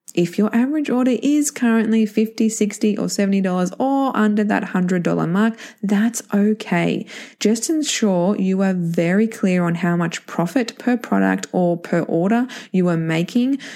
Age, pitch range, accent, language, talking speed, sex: 20-39, 175-225 Hz, Australian, English, 155 wpm, female